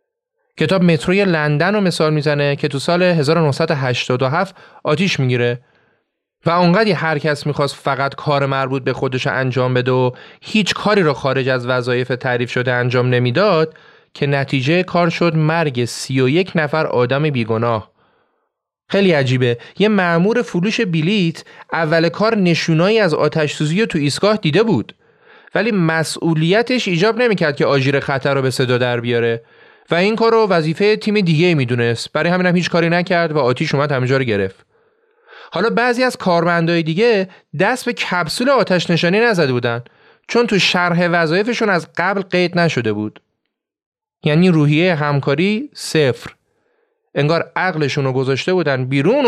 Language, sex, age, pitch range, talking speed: Persian, male, 30-49, 140-195 Hz, 145 wpm